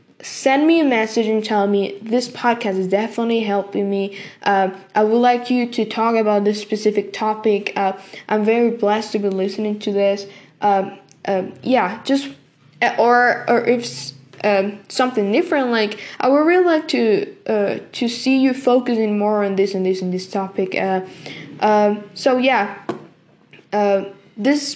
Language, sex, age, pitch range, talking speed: English, female, 10-29, 205-255 Hz, 165 wpm